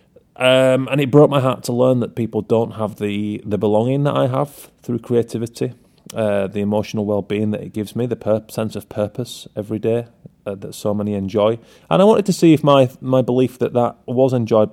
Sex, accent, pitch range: male, British, 100-120 Hz